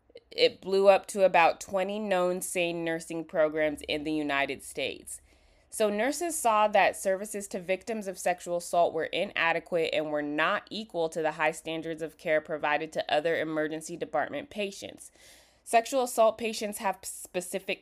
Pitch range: 155-195 Hz